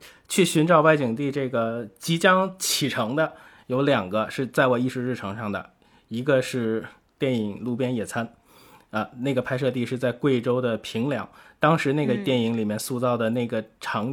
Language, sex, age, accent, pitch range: Chinese, male, 20-39, native, 120-155 Hz